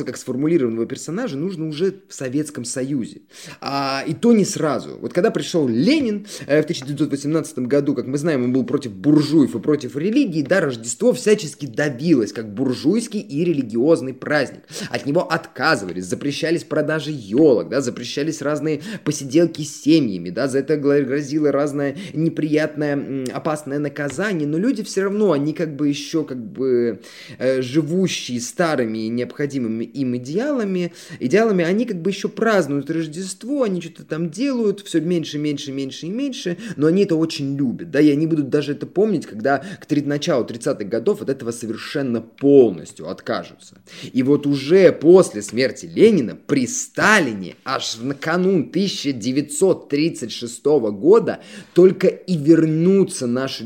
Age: 20-39